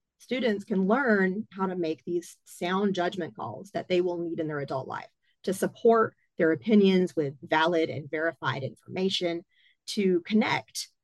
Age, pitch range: 40-59, 170-220 Hz